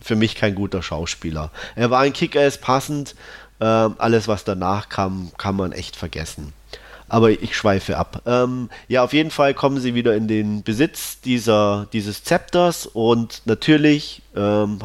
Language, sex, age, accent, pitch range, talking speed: German, male, 30-49, German, 100-120 Hz, 165 wpm